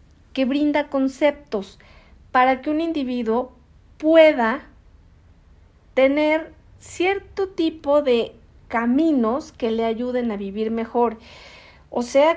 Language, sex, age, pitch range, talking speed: Spanish, female, 40-59, 215-270 Hz, 100 wpm